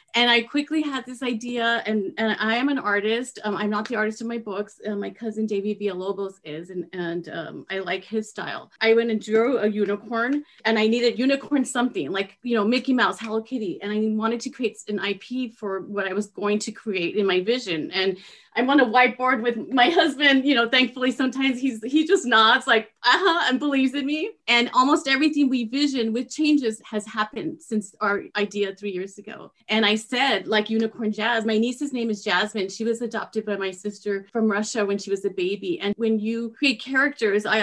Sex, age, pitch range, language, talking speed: female, 30-49, 210-255 Hz, English, 215 wpm